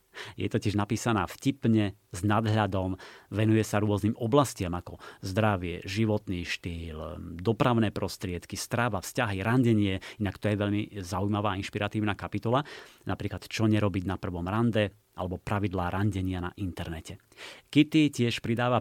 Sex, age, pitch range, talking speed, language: male, 30-49, 100-125 Hz, 135 wpm, Slovak